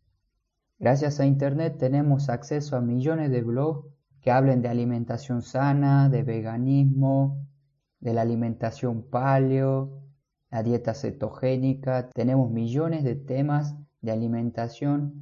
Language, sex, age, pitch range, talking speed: Spanish, male, 20-39, 115-140 Hz, 115 wpm